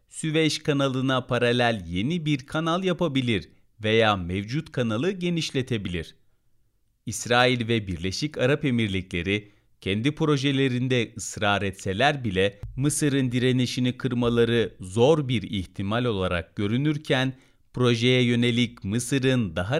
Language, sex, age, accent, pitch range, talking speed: Turkish, male, 40-59, native, 105-145 Hz, 100 wpm